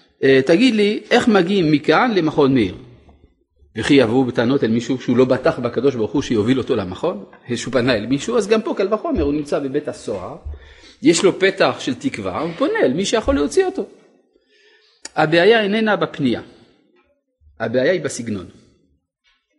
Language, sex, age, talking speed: Hebrew, male, 40-59, 160 wpm